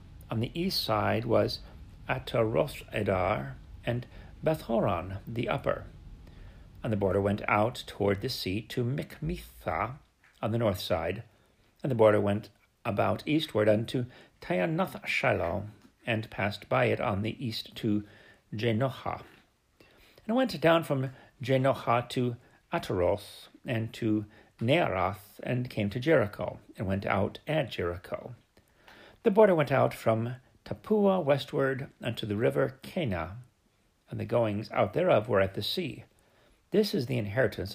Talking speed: 140 wpm